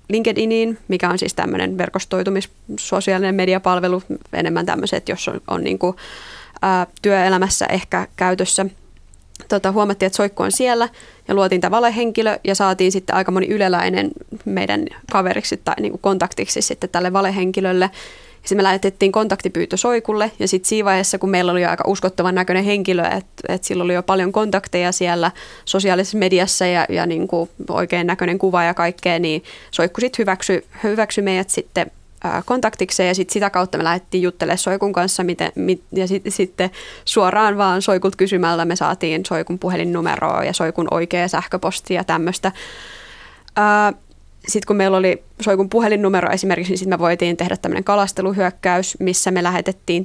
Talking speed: 155 wpm